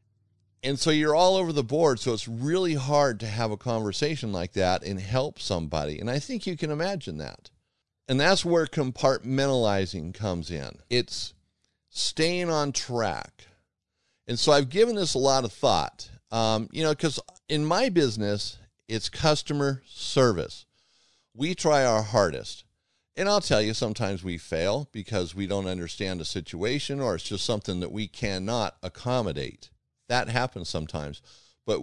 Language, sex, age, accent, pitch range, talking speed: English, male, 50-69, American, 100-135 Hz, 160 wpm